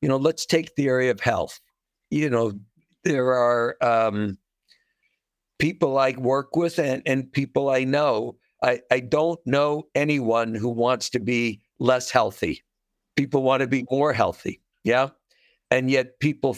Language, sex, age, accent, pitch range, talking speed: English, male, 60-79, American, 120-140 Hz, 155 wpm